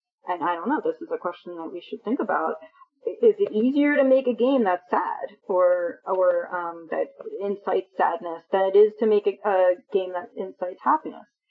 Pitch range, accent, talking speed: 185-305 Hz, American, 205 wpm